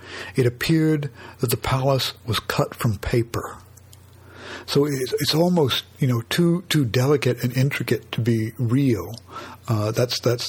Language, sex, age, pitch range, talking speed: English, male, 60-79, 110-135 Hz, 150 wpm